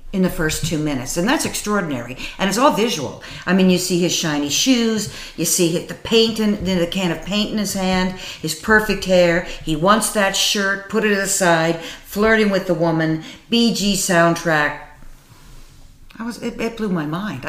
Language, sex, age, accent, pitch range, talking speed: English, female, 50-69, American, 155-205 Hz, 190 wpm